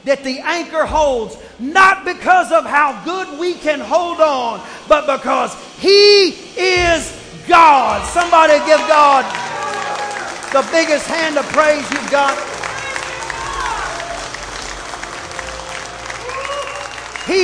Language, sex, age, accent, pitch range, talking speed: English, male, 40-59, American, 280-340 Hz, 100 wpm